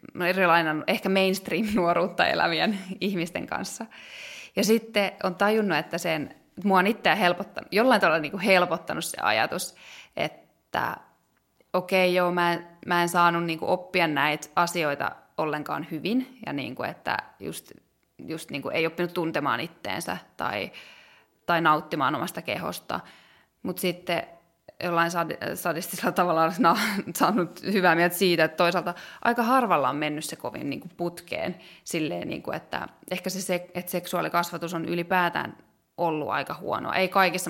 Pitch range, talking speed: 165-190 Hz, 130 wpm